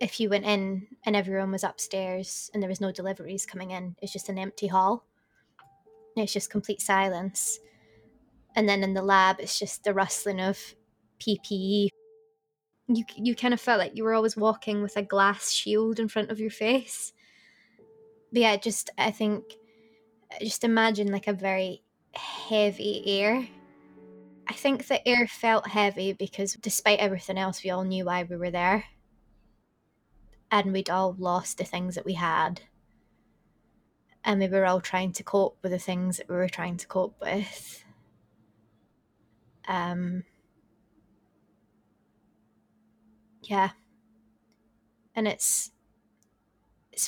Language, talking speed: English, 145 wpm